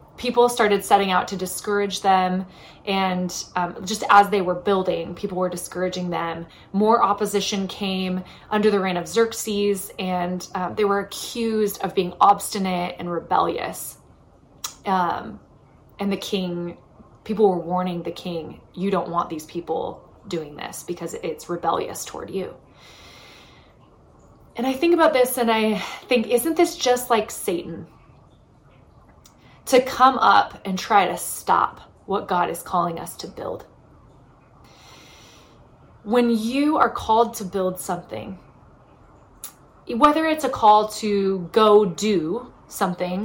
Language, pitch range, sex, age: English, 180-215 Hz, female, 20-39